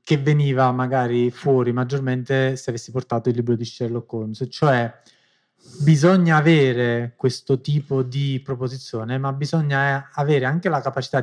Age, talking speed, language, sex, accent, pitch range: 30-49, 140 wpm, Italian, male, native, 125-150 Hz